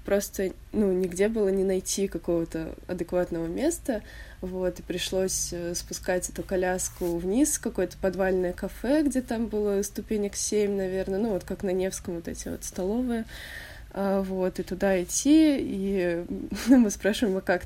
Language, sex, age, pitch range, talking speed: Russian, female, 20-39, 180-215 Hz, 155 wpm